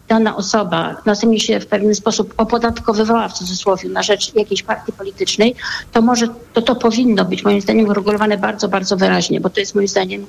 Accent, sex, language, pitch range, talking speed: native, female, Polish, 200-235 Hz, 185 wpm